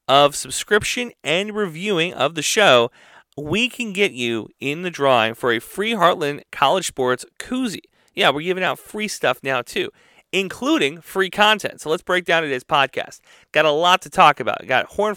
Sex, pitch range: male, 130-195 Hz